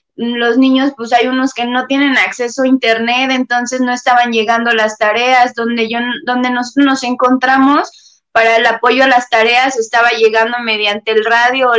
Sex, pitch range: female, 230-265 Hz